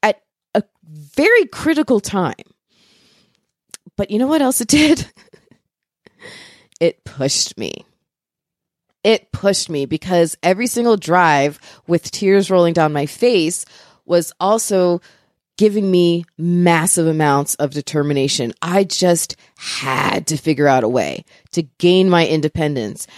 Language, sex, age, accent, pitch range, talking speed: English, female, 30-49, American, 170-280 Hz, 120 wpm